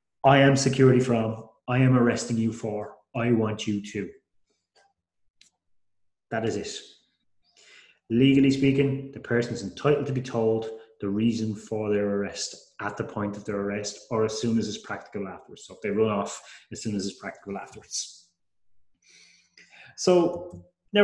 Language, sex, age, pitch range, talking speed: English, male, 30-49, 110-135 Hz, 160 wpm